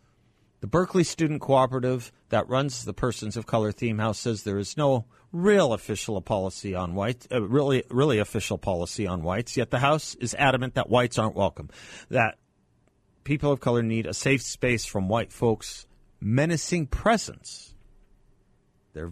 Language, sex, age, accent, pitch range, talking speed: English, male, 40-59, American, 105-135 Hz, 155 wpm